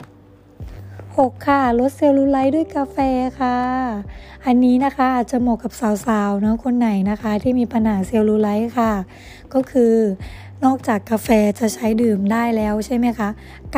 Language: Thai